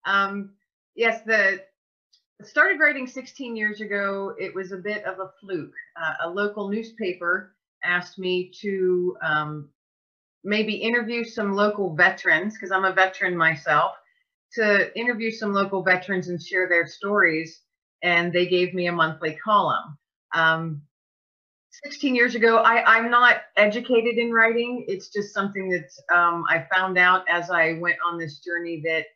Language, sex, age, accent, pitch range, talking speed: English, female, 40-59, American, 165-210 Hz, 150 wpm